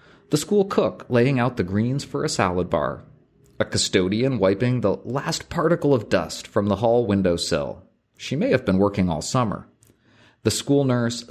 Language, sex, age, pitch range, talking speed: English, male, 30-49, 105-140 Hz, 175 wpm